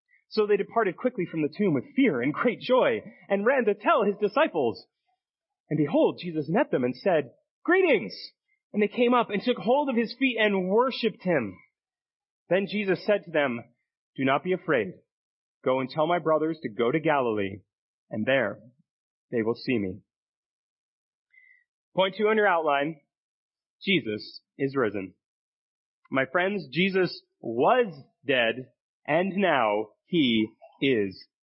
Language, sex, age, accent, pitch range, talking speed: English, male, 30-49, American, 150-235 Hz, 155 wpm